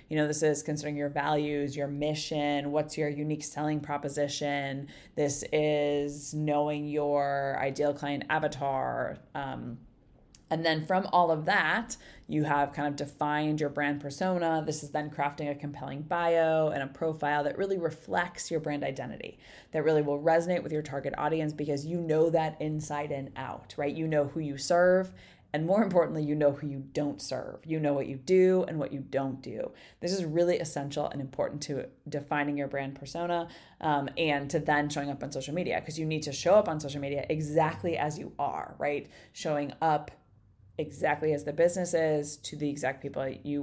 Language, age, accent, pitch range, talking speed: English, 20-39, American, 140-155 Hz, 190 wpm